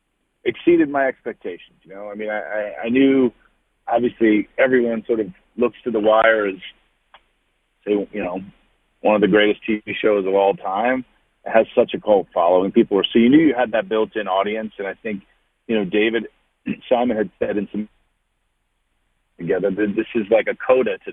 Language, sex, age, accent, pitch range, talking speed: English, male, 40-59, American, 100-125 Hz, 195 wpm